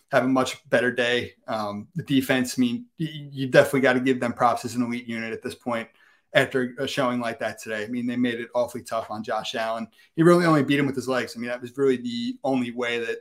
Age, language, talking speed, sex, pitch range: 30-49, English, 265 wpm, male, 120-135 Hz